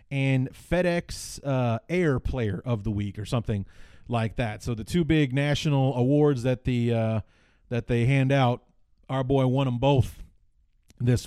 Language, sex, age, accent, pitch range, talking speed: English, male, 30-49, American, 110-140 Hz, 165 wpm